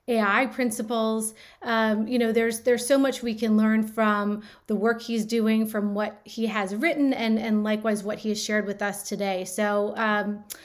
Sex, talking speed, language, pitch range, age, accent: female, 190 wpm, English, 205-235 Hz, 30-49, American